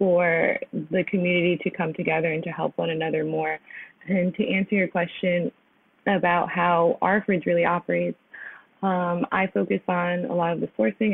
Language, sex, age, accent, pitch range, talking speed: English, female, 20-39, American, 175-200 Hz, 170 wpm